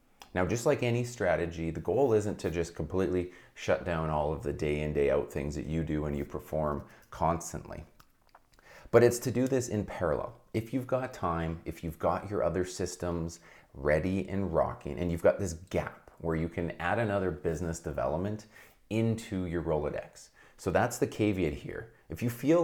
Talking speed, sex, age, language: 190 wpm, male, 30-49, English